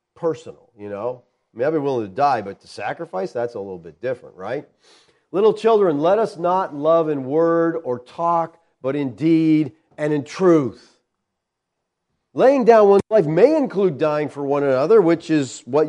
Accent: American